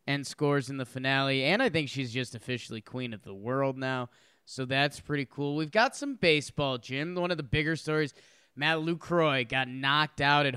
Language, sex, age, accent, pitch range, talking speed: English, male, 20-39, American, 135-170 Hz, 205 wpm